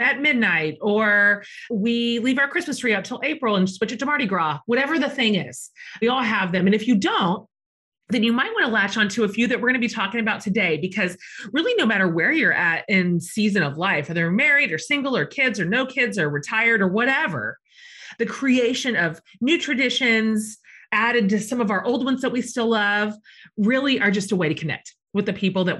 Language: English